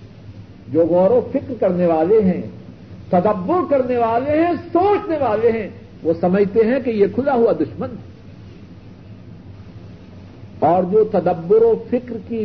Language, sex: Urdu, male